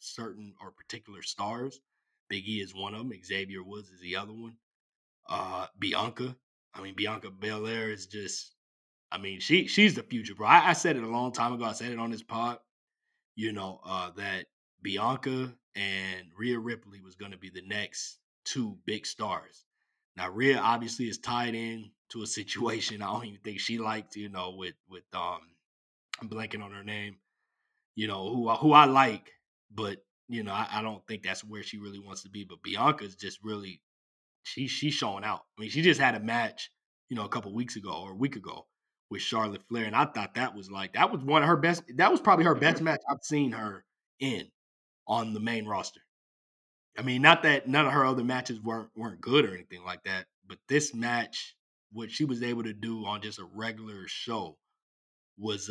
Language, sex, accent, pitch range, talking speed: English, male, American, 100-120 Hz, 205 wpm